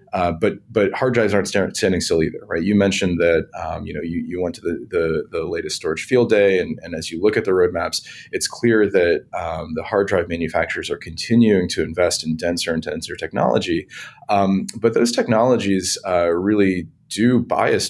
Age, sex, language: 30-49, male, English